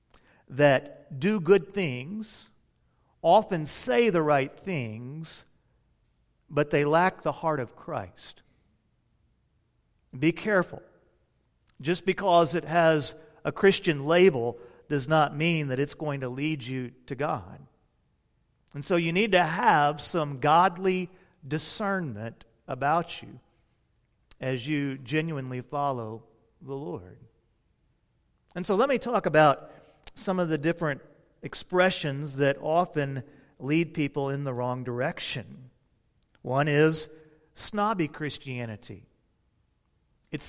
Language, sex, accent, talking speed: English, male, American, 115 wpm